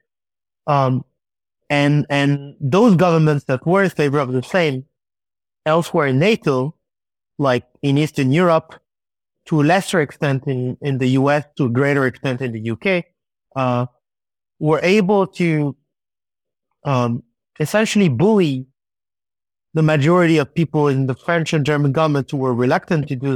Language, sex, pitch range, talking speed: English, male, 130-165 Hz, 145 wpm